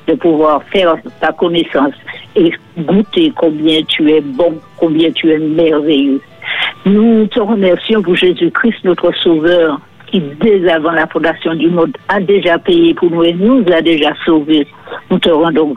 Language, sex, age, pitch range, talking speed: French, female, 60-79, 165-200 Hz, 160 wpm